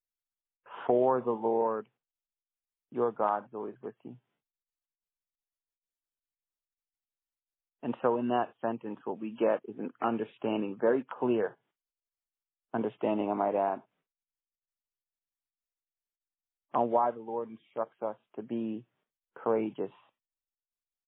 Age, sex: 40-59, male